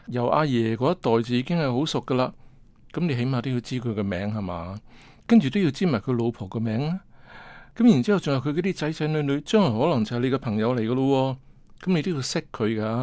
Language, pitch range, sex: Chinese, 115-150 Hz, male